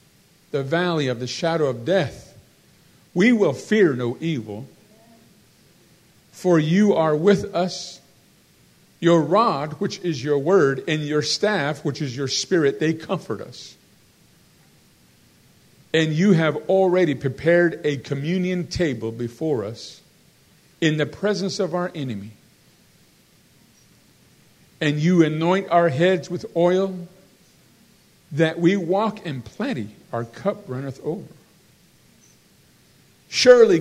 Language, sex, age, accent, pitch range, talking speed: English, male, 50-69, American, 145-190 Hz, 115 wpm